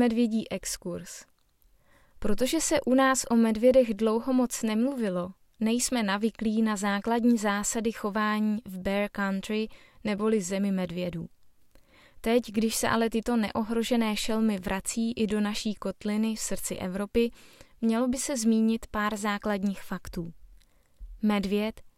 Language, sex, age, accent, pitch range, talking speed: Czech, female, 20-39, native, 200-235 Hz, 125 wpm